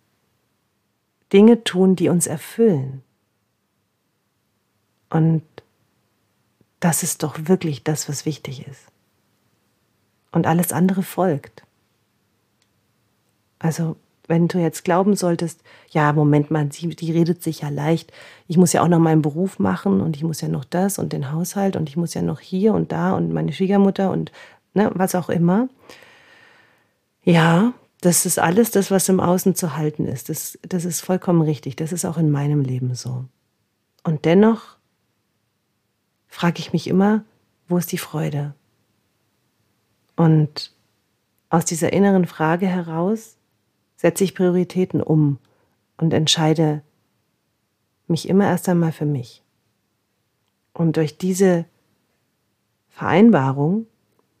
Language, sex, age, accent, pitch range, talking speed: German, female, 40-59, German, 125-180 Hz, 130 wpm